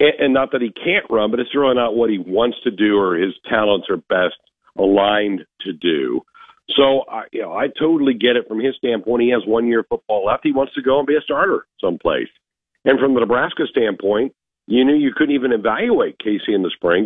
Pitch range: 110-140 Hz